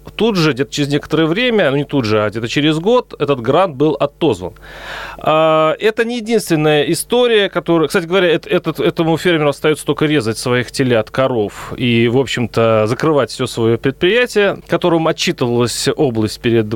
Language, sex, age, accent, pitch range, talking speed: Russian, male, 30-49, native, 125-170 Hz, 160 wpm